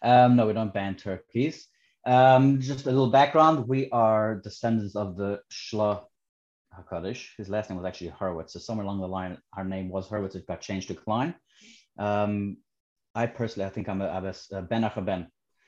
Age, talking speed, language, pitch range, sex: 30-49, 190 wpm, English, 95-120 Hz, male